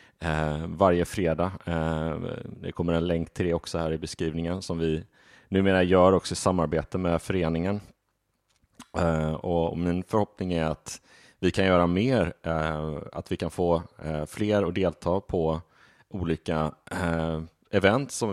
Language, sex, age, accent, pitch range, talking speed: Swedish, male, 30-49, Norwegian, 80-95 Hz, 140 wpm